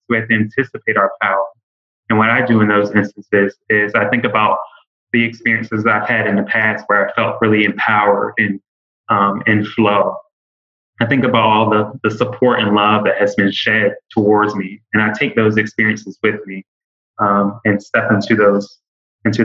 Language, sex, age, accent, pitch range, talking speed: English, male, 20-39, American, 105-115 Hz, 190 wpm